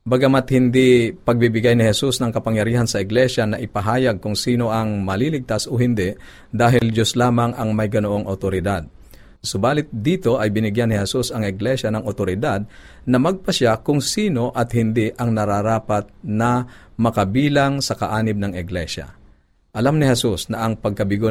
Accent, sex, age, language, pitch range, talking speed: native, male, 50-69, Filipino, 100-125 Hz, 150 wpm